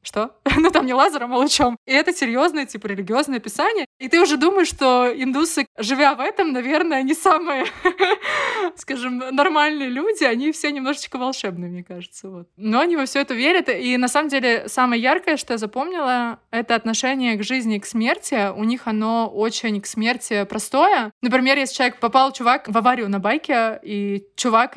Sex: female